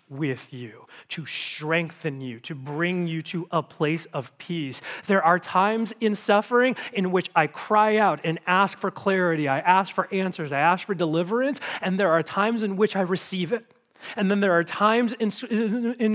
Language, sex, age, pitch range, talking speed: English, male, 30-49, 150-195 Hz, 190 wpm